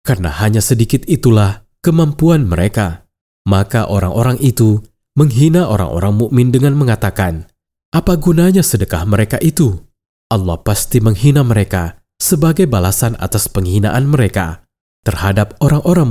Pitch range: 90-125 Hz